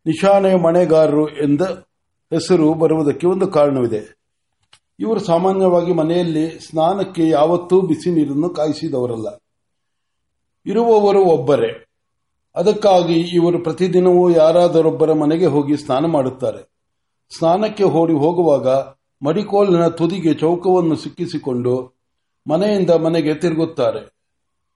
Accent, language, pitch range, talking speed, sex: native, Kannada, 150-185 Hz, 80 wpm, male